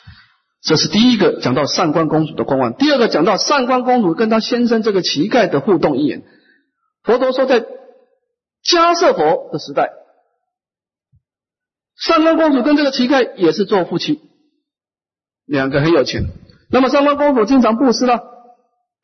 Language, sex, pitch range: Chinese, male, 185-295 Hz